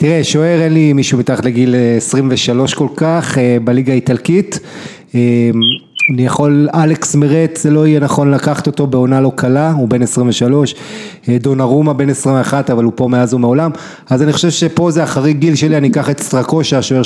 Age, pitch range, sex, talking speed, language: 30-49, 130-160 Hz, male, 165 wpm, English